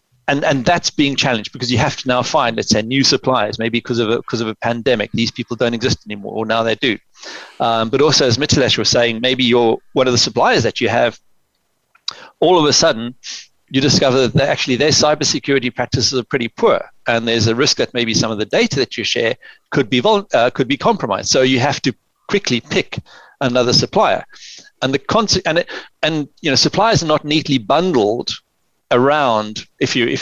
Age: 40-59